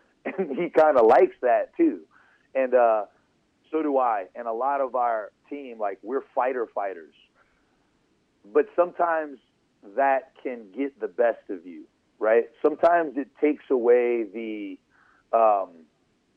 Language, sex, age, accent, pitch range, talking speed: English, male, 40-59, American, 125-155 Hz, 140 wpm